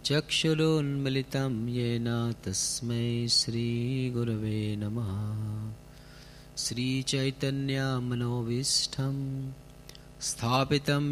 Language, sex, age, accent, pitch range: Italian, male, 30-49, Indian, 115-145 Hz